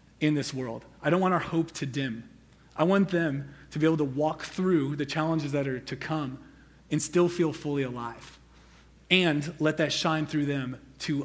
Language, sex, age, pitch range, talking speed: English, male, 30-49, 135-165 Hz, 195 wpm